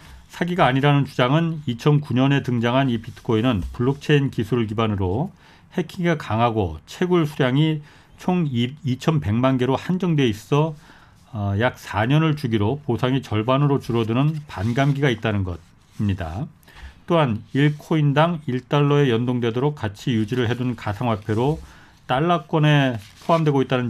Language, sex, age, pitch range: Korean, male, 40-59, 115-150 Hz